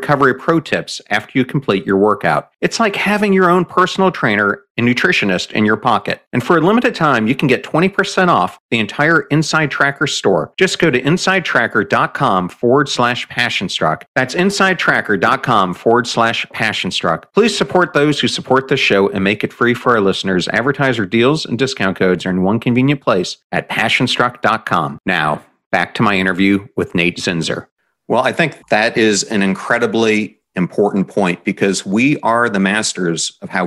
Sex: male